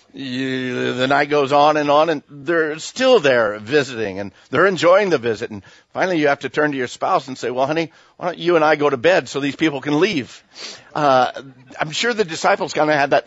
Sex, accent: male, American